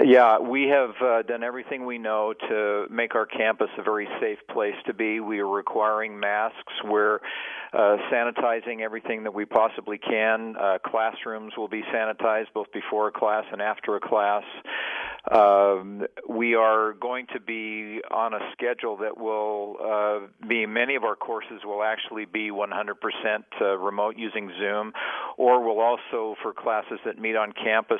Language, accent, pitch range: English, American, 100-110 Hz